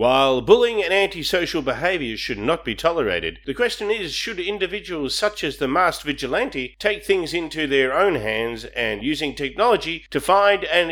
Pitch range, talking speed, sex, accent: 135-195 Hz, 170 wpm, male, Australian